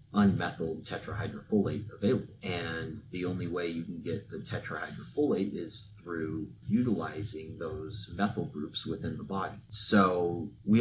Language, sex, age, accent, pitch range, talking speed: English, male, 30-49, American, 85-110 Hz, 130 wpm